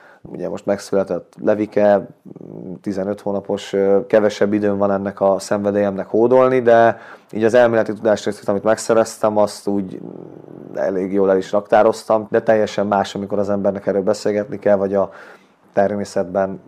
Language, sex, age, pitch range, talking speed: Hungarian, male, 30-49, 95-105 Hz, 140 wpm